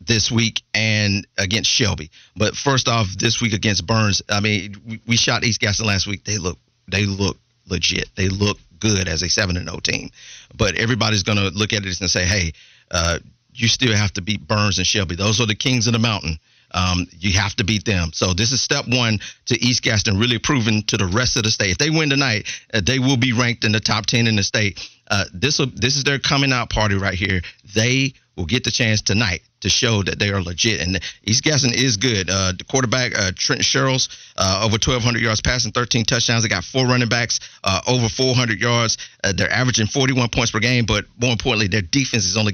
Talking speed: 220 wpm